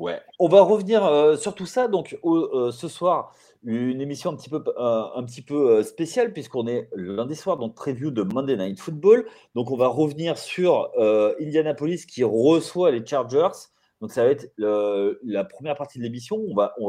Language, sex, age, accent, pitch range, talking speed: French, male, 30-49, French, 120-175 Hz, 205 wpm